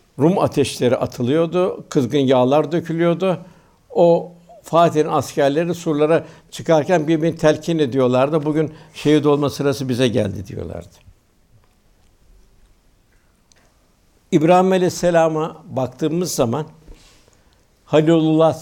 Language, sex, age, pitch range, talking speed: Turkish, male, 60-79, 125-165 Hz, 85 wpm